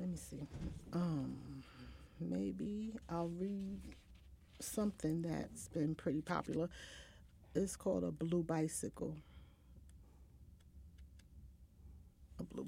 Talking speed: 90 wpm